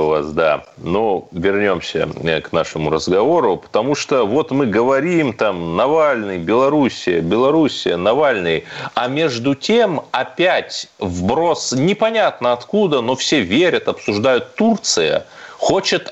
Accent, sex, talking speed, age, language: native, male, 115 wpm, 30-49, Russian